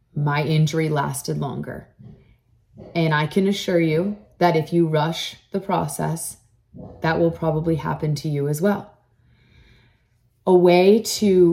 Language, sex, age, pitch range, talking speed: English, female, 30-49, 145-170 Hz, 135 wpm